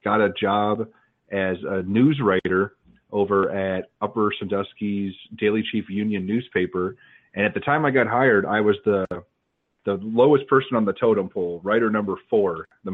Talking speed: 165 wpm